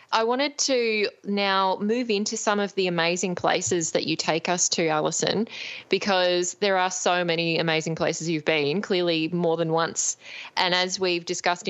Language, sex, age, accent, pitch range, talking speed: English, female, 20-39, Australian, 165-205 Hz, 175 wpm